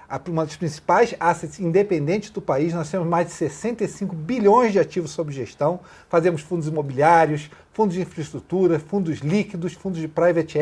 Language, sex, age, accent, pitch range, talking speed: Portuguese, male, 40-59, Brazilian, 160-200 Hz, 160 wpm